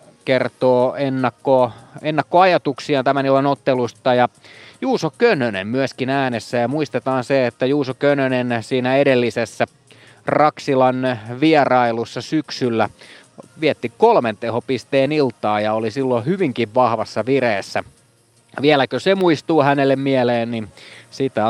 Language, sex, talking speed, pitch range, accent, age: Finnish, male, 110 wpm, 115-145 Hz, native, 30-49